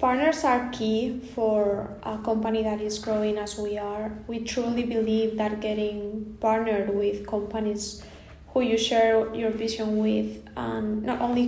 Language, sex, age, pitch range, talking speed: English, female, 20-39, 205-225 Hz, 145 wpm